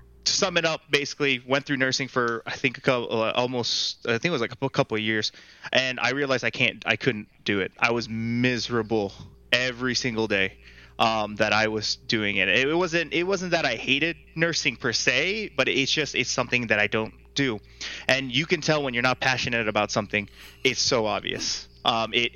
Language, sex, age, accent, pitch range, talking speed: English, male, 20-39, American, 105-135 Hz, 200 wpm